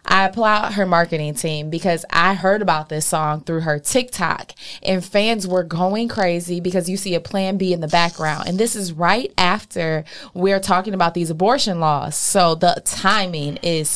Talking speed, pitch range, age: 185 wpm, 165-210 Hz, 20-39